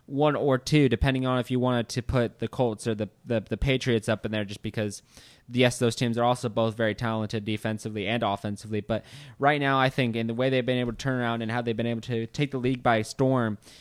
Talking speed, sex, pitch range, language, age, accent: 250 wpm, male, 115-135 Hz, English, 20-39, American